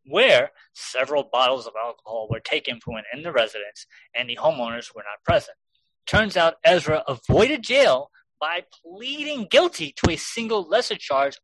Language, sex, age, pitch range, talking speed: English, male, 30-49, 130-185 Hz, 155 wpm